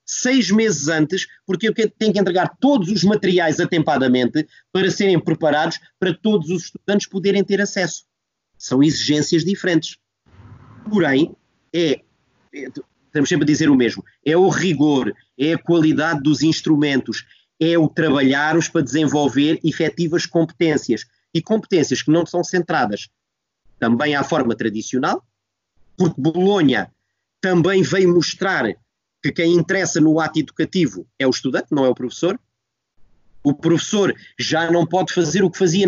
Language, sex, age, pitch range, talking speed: Portuguese, male, 30-49, 145-190 Hz, 140 wpm